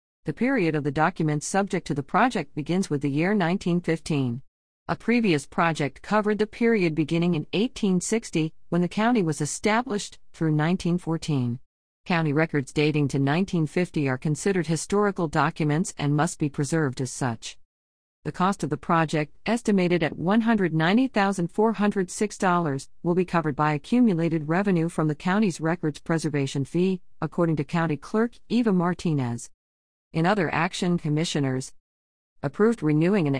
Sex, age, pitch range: female, 50-69, 150-200 Hz